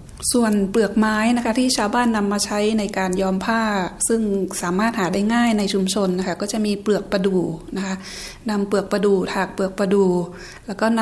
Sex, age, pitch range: female, 20-39, 190-225 Hz